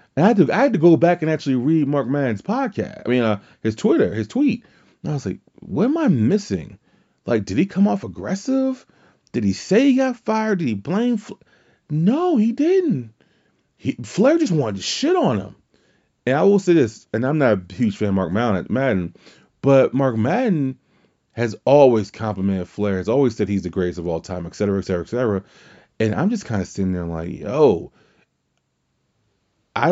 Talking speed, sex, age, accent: 205 wpm, male, 30-49, American